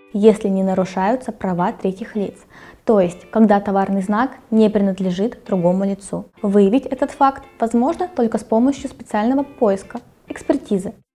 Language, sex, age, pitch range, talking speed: Russian, female, 20-39, 195-245 Hz, 135 wpm